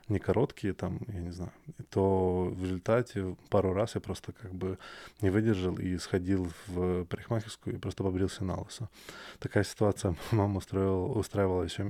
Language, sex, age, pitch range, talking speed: Russian, male, 20-39, 90-105 Hz, 150 wpm